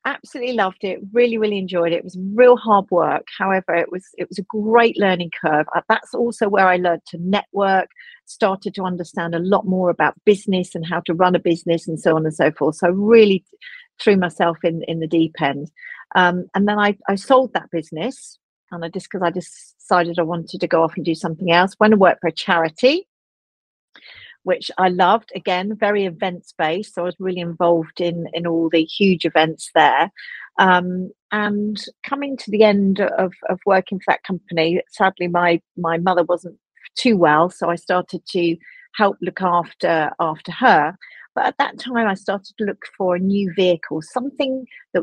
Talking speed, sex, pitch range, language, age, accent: 200 wpm, female, 170-205 Hz, English, 50-69, British